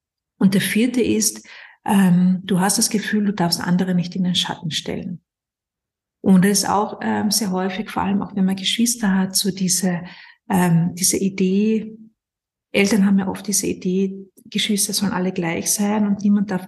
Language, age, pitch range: German, 50-69, 180-210 Hz